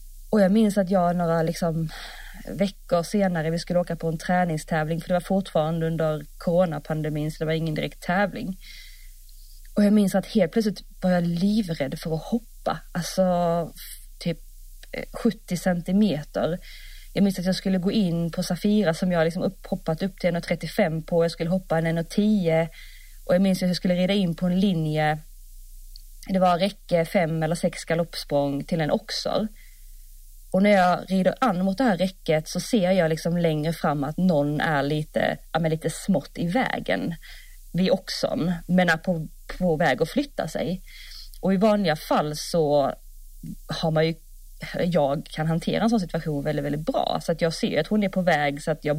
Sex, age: female, 30-49